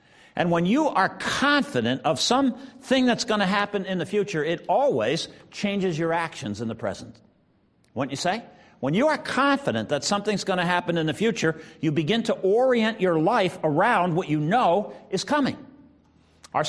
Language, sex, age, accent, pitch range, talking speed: English, male, 50-69, American, 180-255 Hz, 180 wpm